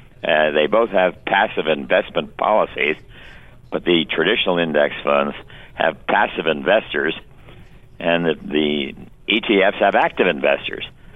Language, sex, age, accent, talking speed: English, male, 60-79, American, 120 wpm